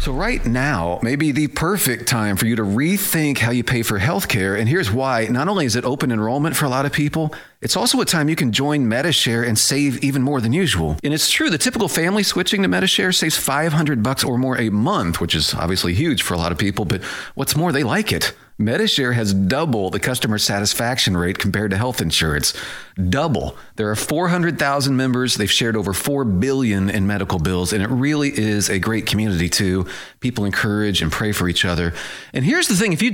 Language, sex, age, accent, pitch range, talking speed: English, male, 40-59, American, 105-155 Hz, 215 wpm